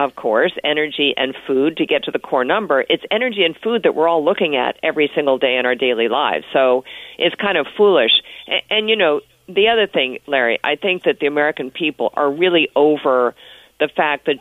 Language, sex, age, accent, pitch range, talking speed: English, female, 50-69, American, 140-190 Hz, 215 wpm